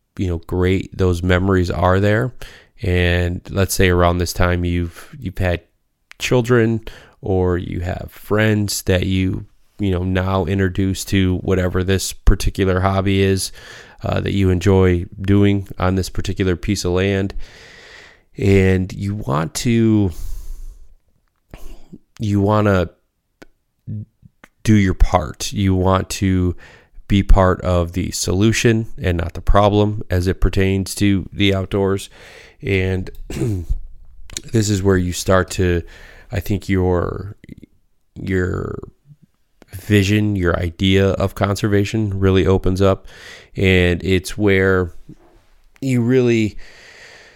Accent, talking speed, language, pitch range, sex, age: American, 120 wpm, English, 90-105 Hz, male, 20-39